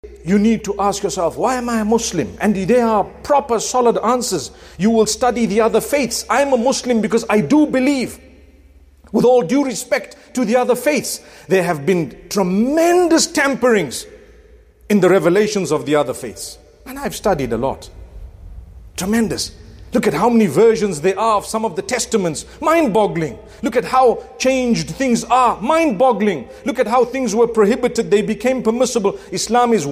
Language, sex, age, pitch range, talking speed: English, male, 50-69, 180-240 Hz, 175 wpm